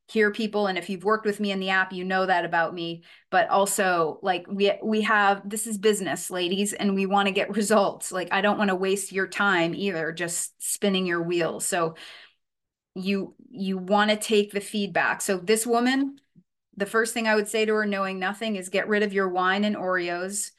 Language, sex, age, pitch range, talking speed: English, female, 30-49, 190-220 Hz, 215 wpm